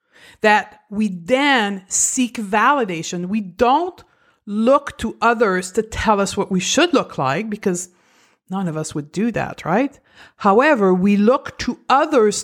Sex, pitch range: female, 185-235 Hz